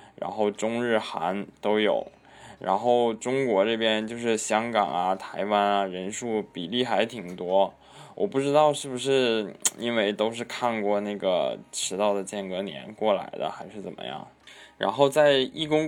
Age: 20-39